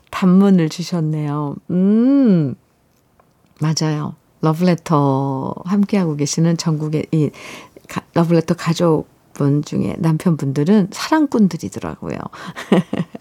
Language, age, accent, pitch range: Korean, 50-69, native, 165-225 Hz